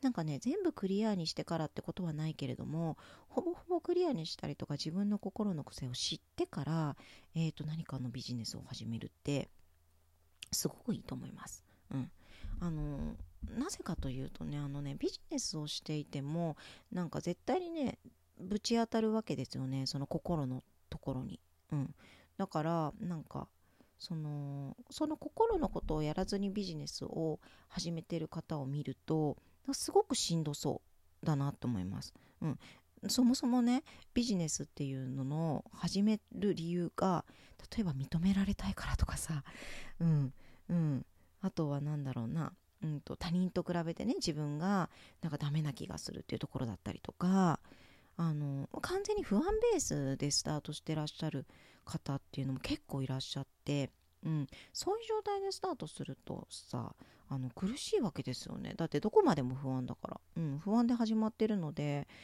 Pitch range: 135-200 Hz